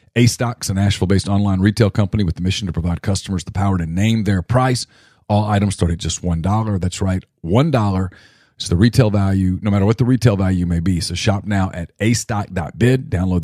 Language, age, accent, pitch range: English, 40-59, American, 90-110 Hz